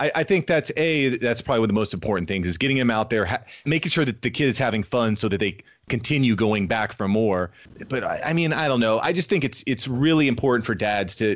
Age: 30-49